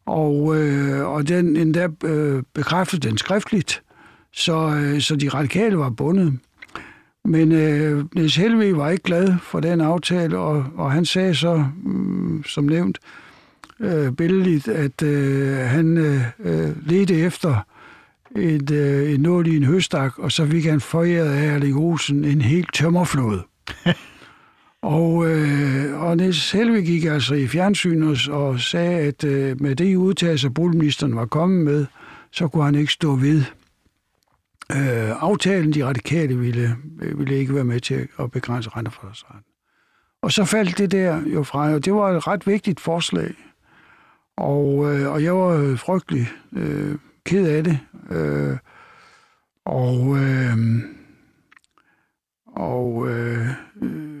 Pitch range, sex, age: 135-170 Hz, male, 60-79